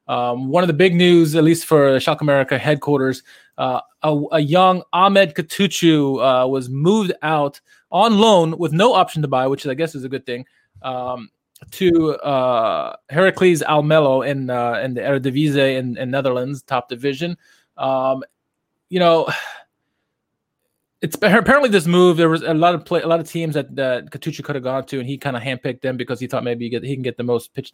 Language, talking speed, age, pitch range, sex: English, 200 wpm, 20-39, 135-170 Hz, male